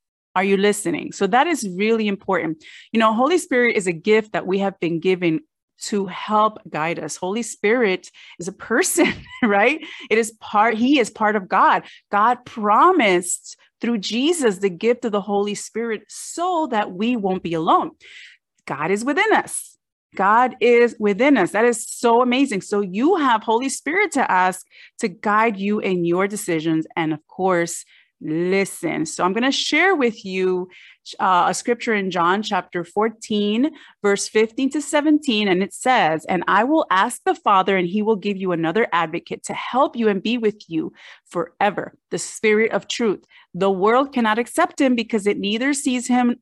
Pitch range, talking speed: 190-255 Hz, 180 wpm